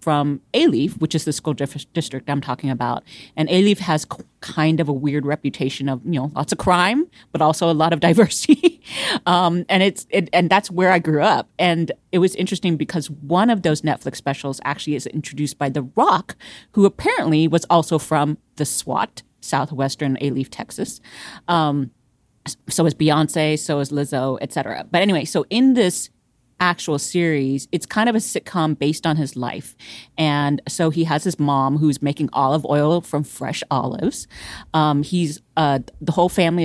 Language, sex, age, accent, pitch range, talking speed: English, female, 30-49, American, 140-170 Hz, 185 wpm